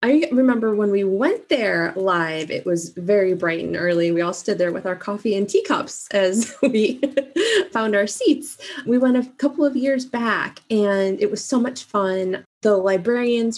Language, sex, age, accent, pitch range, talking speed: English, female, 20-39, American, 175-235 Hz, 185 wpm